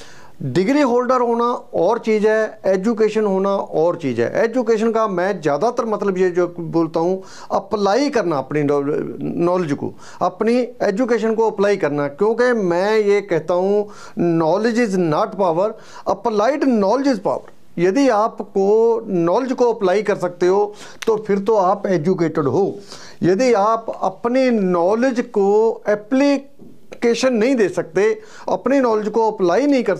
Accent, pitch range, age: Indian, 185-230 Hz, 40-59